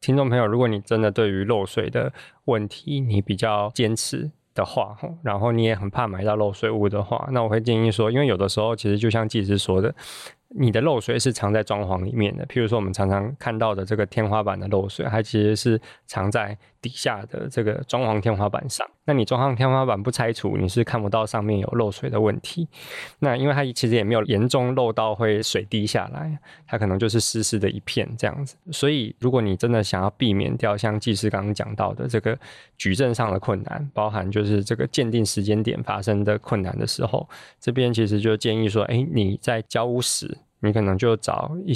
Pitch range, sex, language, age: 105-125 Hz, male, Chinese, 20-39